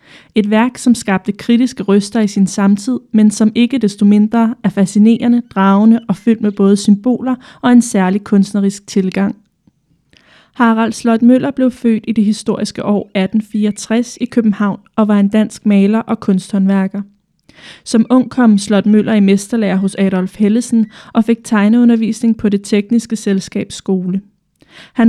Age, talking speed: 20-39, 155 wpm